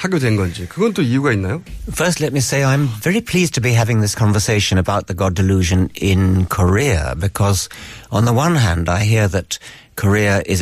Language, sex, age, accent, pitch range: Korean, male, 60-79, British, 95-120 Hz